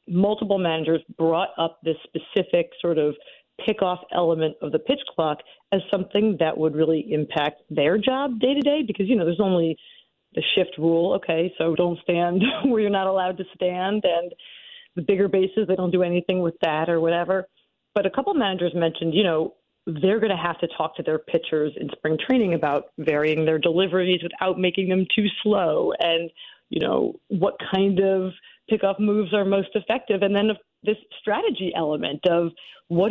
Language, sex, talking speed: English, female, 185 wpm